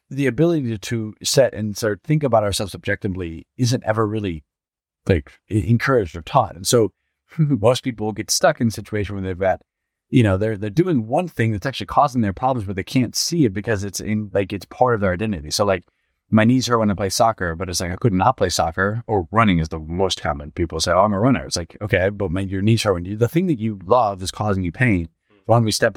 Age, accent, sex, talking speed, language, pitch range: 30-49, American, male, 245 wpm, English, 95-120 Hz